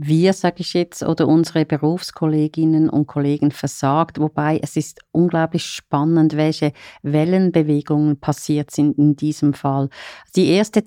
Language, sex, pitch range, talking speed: German, female, 150-175 Hz, 135 wpm